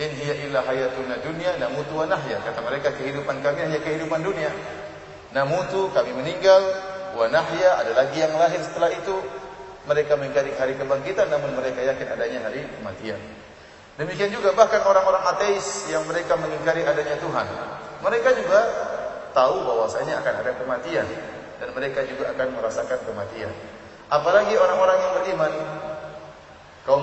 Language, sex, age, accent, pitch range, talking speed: English, male, 30-49, Indonesian, 145-190 Hz, 130 wpm